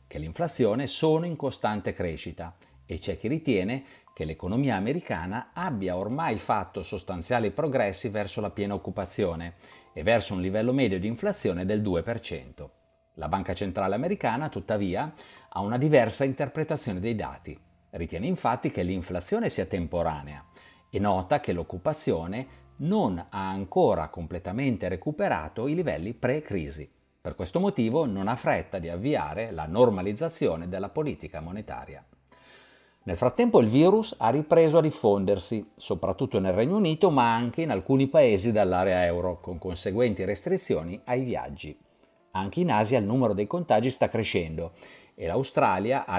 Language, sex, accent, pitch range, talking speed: Italian, male, native, 90-130 Hz, 140 wpm